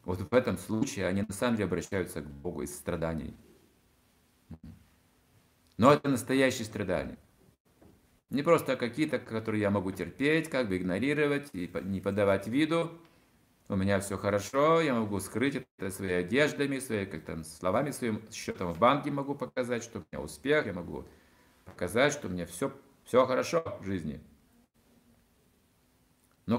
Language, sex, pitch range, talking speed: Russian, male, 90-140 Hz, 145 wpm